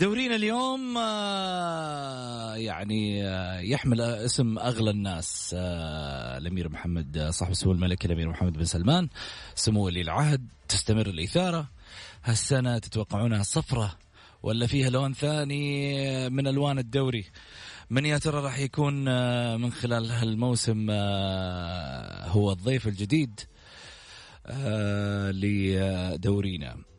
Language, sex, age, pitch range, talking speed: English, male, 30-49, 95-135 Hz, 90 wpm